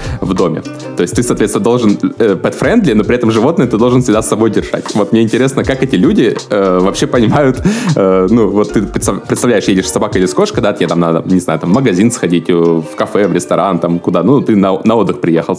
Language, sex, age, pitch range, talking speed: Russian, male, 20-39, 85-110 Hz, 230 wpm